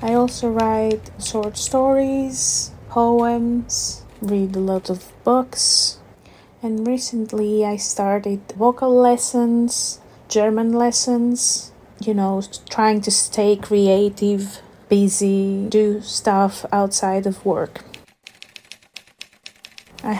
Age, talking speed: 30-49, 95 wpm